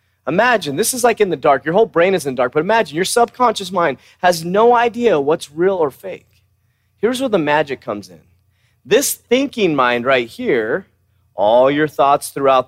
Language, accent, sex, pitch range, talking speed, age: English, American, male, 115-195 Hz, 195 wpm, 30-49